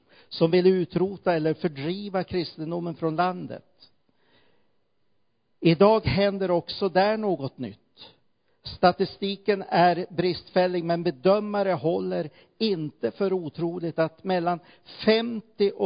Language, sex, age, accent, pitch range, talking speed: Swedish, male, 50-69, native, 155-185 Hz, 100 wpm